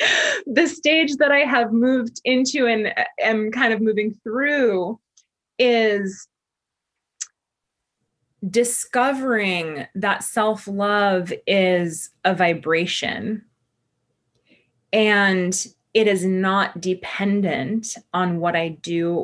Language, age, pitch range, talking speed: English, 20-39, 175-225 Hz, 95 wpm